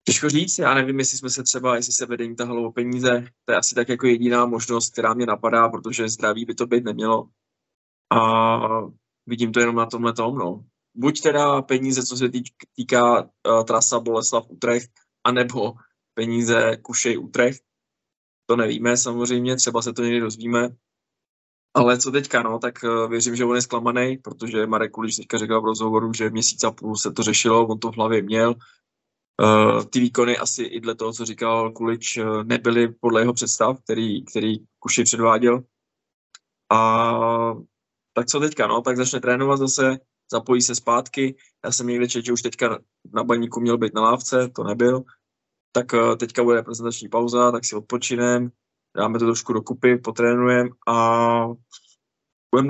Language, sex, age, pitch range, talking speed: Czech, male, 20-39, 115-125 Hz, 165 wpm